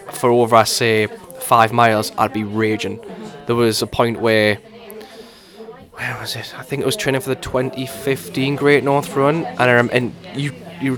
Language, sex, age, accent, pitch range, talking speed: English, male, 10-29, British, 115-140 Hz, 175 wpm